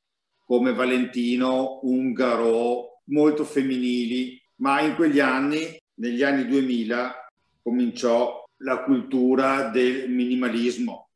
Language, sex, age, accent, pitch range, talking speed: Italian, male, 50-69, native, 120-145 Hz, 90 wpm